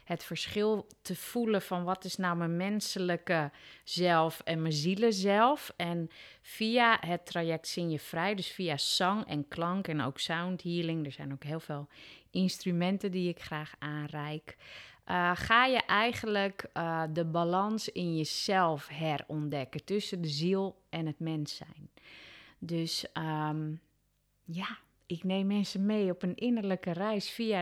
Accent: Dutch